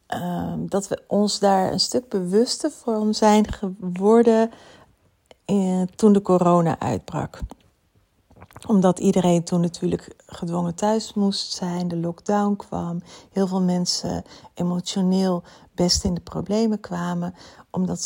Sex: female